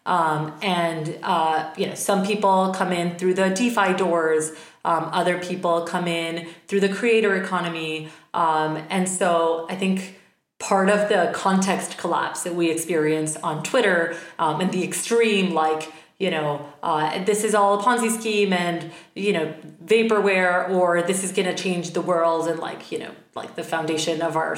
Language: English